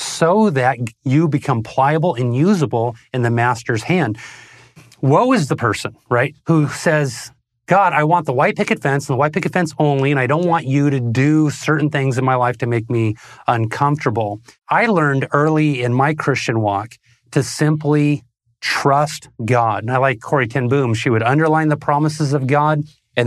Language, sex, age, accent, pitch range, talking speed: English, male, 30-49, American, 125-155 Hz, 185 wpm